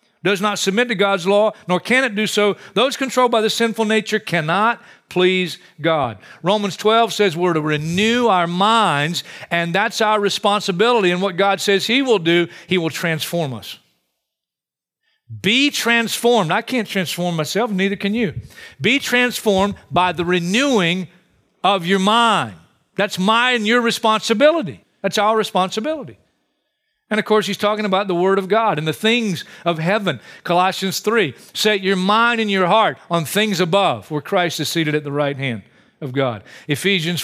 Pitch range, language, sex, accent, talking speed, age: 170-220 Hz, English, male, American, 170 wpm, 50-69